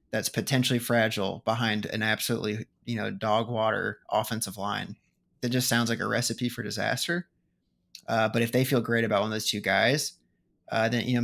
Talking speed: 190 wpm